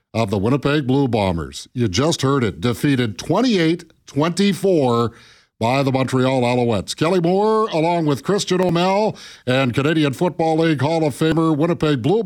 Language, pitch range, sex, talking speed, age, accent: English, 120-155 Hz, male, 145 wpm, 50-69, American